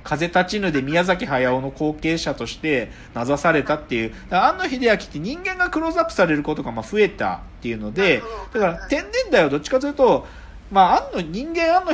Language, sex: Japanese, male